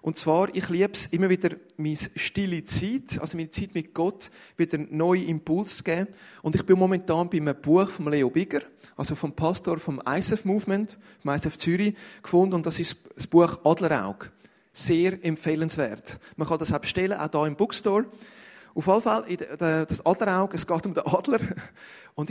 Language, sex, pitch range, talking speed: German, male, 150-190 Hz, 180 wpm